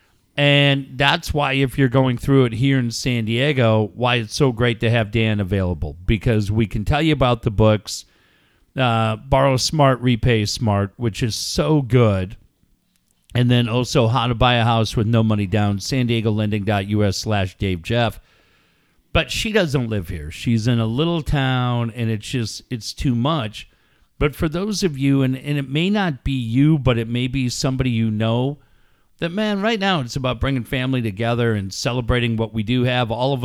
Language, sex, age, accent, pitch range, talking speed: English, male, 40-59, American, 110-135 Hz, 190 wpm